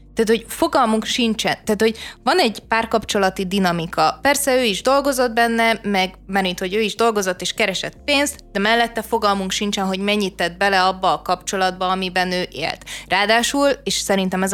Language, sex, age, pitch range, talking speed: Hungarian, female, 20-39, 185-230 Hz, 175 wpm